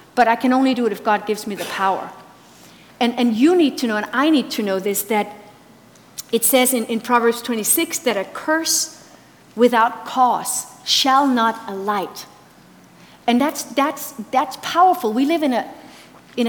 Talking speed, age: 180 wpm, 50-69